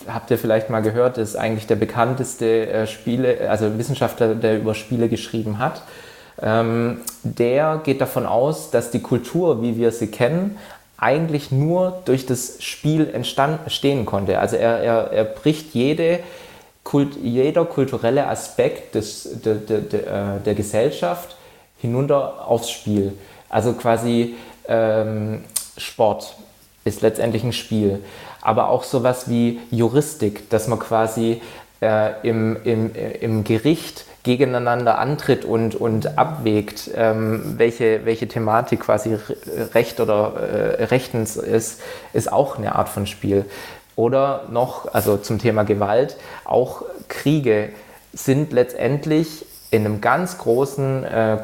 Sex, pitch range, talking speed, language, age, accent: male, 110-130 Hz, 130 wpm, German, 20-39, German